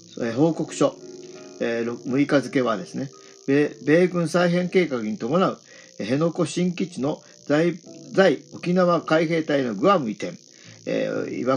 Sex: male